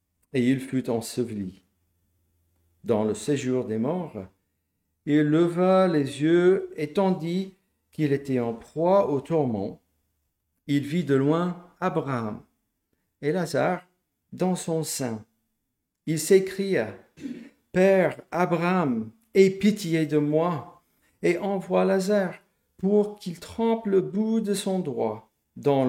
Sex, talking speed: male, 125 wpm